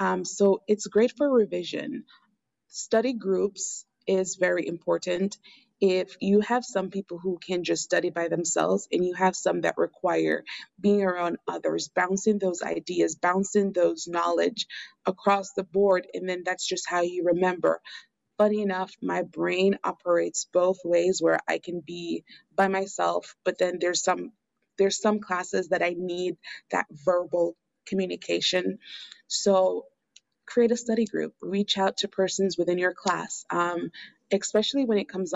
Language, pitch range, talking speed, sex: English, 175-205 Hz, 155 wpm, female